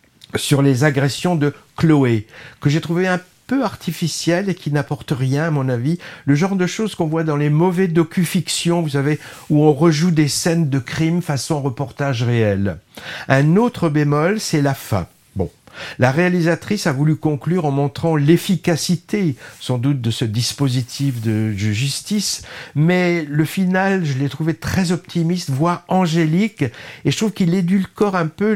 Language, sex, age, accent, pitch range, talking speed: French, male, 50-69, French, 130-170 Hz, 165 wpm